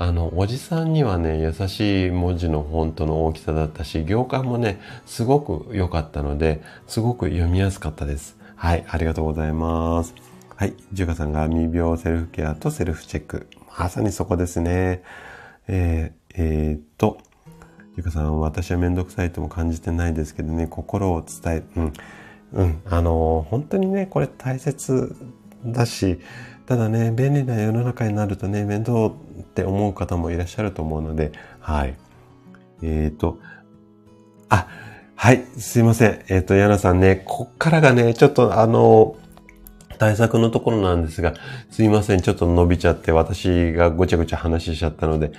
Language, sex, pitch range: Japanese, male, 80-110 Hz